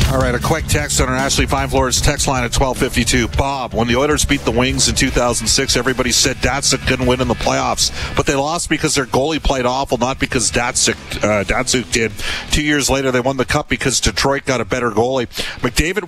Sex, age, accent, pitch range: male, 50-69, American, 105-135 Hz